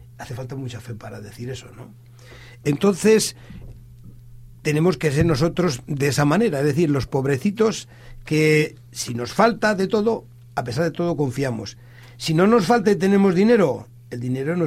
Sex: male